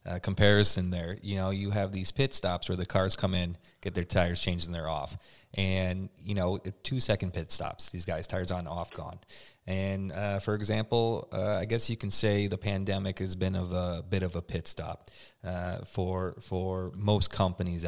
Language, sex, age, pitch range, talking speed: English, male, 30-49, 90-110 Hz, 205 wpm